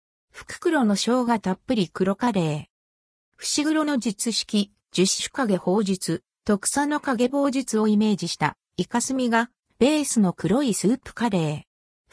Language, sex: Japanese, female